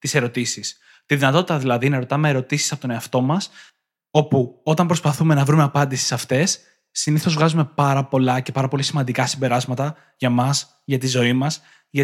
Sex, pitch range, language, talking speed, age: male, 130-160 Hz, Greek, 180 wpm, 20-39